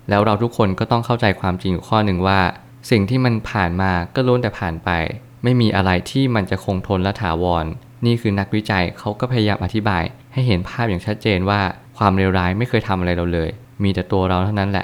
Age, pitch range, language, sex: 20-39, 95-115 Hz, Thai, male